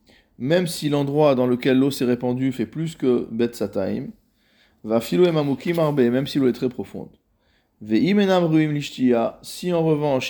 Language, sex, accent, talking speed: French, male, French, 170 wpm